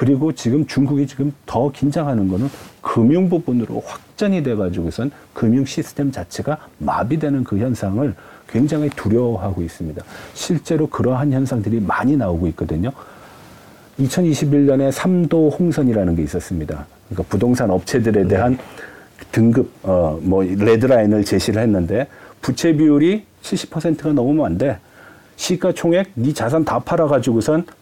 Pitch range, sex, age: 110-155 Hz, male, 40-59